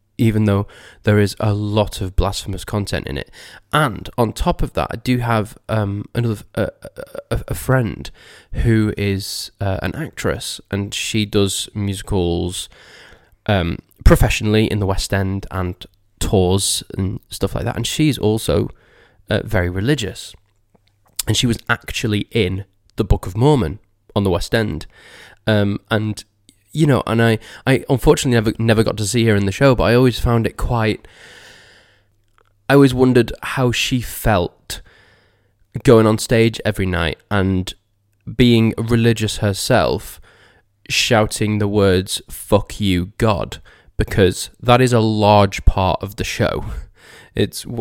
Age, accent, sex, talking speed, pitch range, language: 20-39, British, male, 150 wpm, 95-115 Hz, English